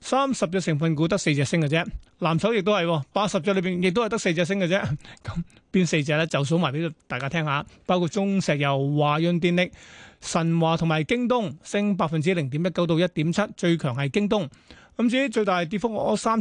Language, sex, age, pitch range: Chinese, male, 30-49, 155-195 Hz